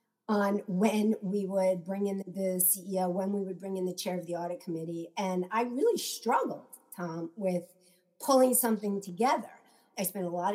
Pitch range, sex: 180-220 Hz, female